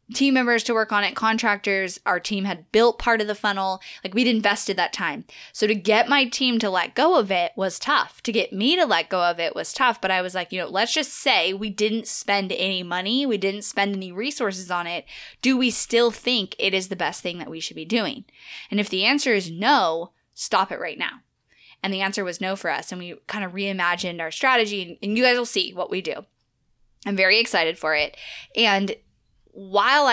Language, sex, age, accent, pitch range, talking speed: English, female, 10-29, American, 175-220 Hz, 230 wpm